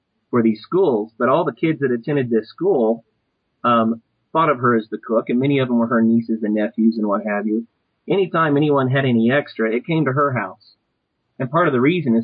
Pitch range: 115-140 Hz